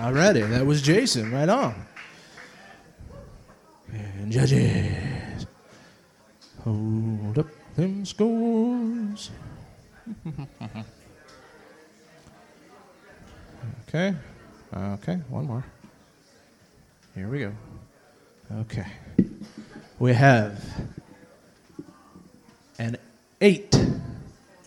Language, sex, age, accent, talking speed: English, male, 30-49, American, 60 wpm